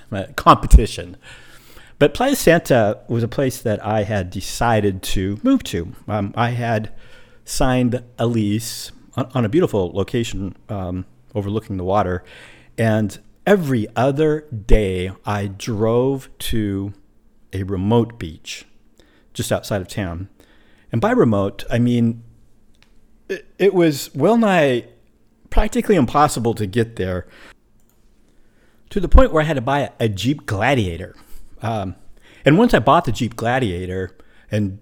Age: 50-69